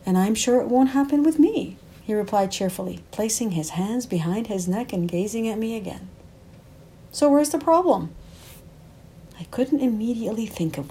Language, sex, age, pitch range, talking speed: English, female, 50-69, 180-260 Hz, 170 wpm